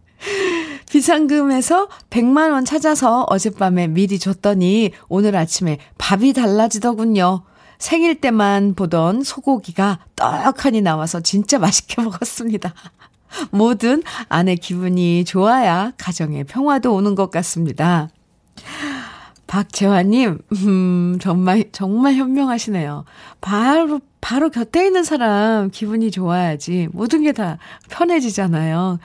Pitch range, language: 175-270 Hz, Korean